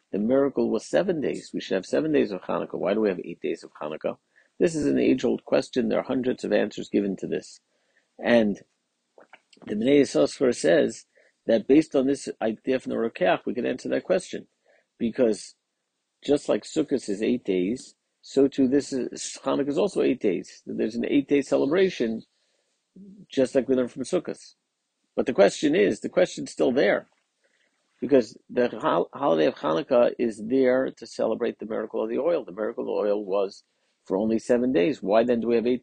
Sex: male